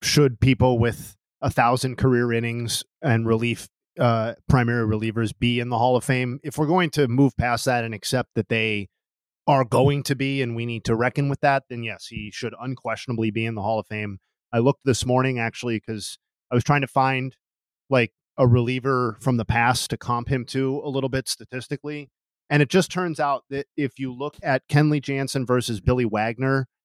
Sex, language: male, English